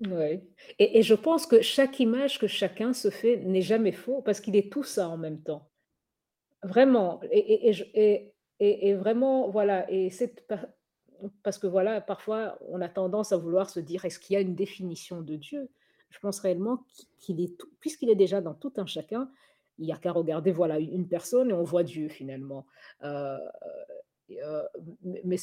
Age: 50-69